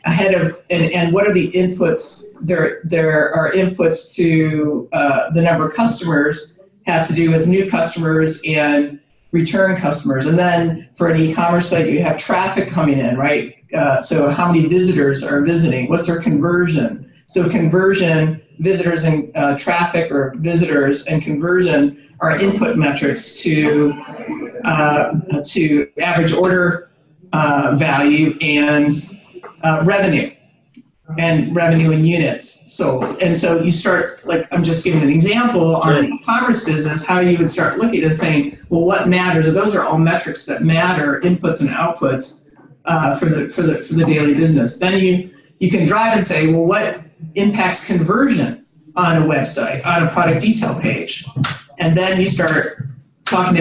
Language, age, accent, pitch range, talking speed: English, 50-69, American, 150-180 Hz, 160 wpm